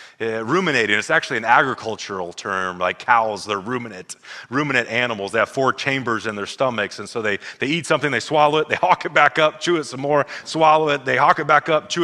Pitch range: 105-140 Hz